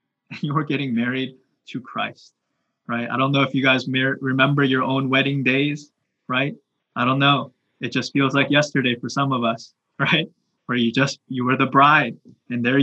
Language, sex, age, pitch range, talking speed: English, male, 20-39, 140-185 Hz, 190 wpm